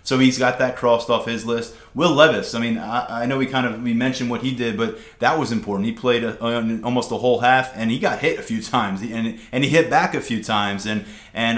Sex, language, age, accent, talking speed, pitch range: male, English, 30-49, American, 270 wpm, 115-135 Hz